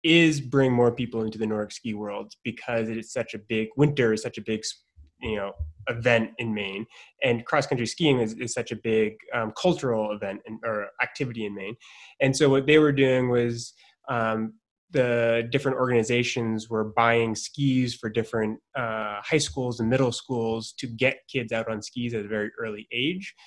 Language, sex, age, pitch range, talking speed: English, male, 20-39, 105-120 Hz, 190 wpm